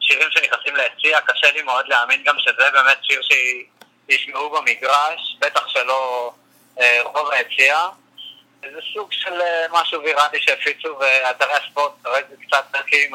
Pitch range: 125-155 Hz